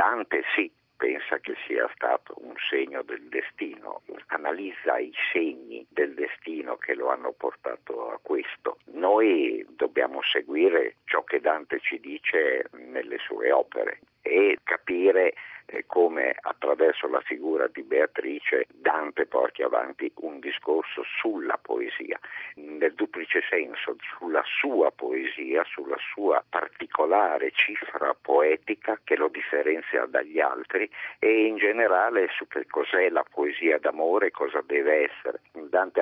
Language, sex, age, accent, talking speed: Italian, male, 50-69, native, 125 wpm